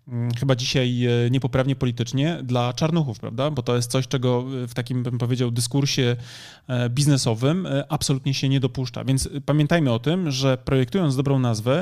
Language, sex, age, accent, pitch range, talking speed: Polish, male, 30-49, native, 120-145 Hz, 150 wpm